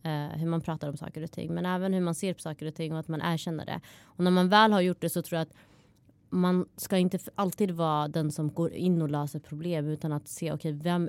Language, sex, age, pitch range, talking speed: Swedish, female, 20-39, 150-180 Hz, 260 wpm